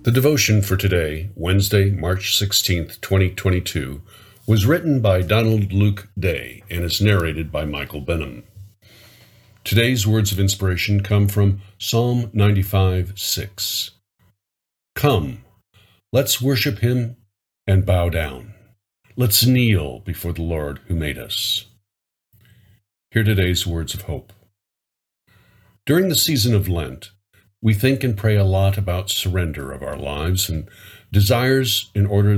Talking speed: 130 wpm